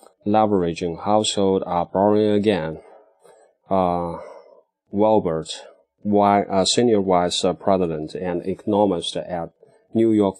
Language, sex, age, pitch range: Chinese, male, 20-39, 90-105 Hz